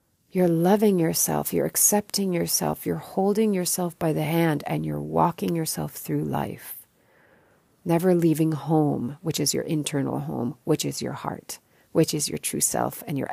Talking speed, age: 165 wpm, 30-49